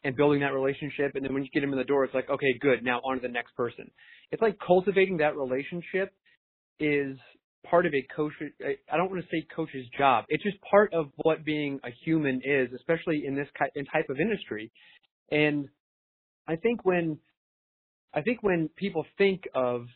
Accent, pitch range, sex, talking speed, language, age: American, 135-165 Hz, male, 195 wpm, English, 30-49